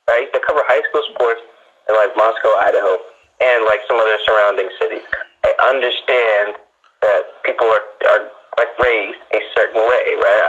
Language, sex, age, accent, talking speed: English, male, 20-39, American, 165 wpm